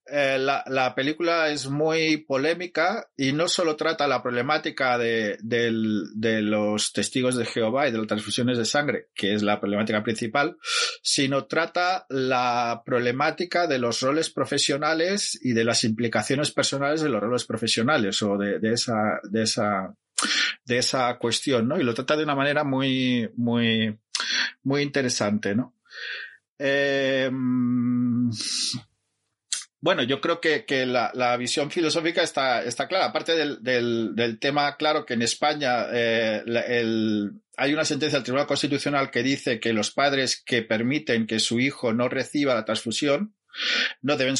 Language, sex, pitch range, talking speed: Spanish, male, 115-145 Hz, 145 wpm